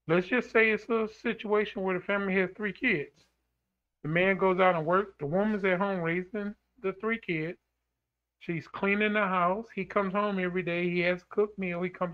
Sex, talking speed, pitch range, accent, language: male, 210 wpm, 155-200 Hz, American, English